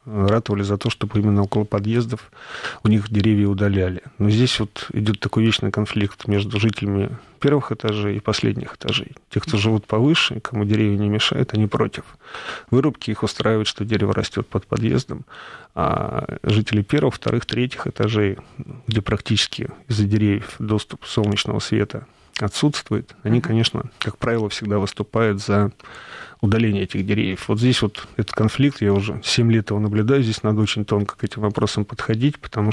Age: 30-49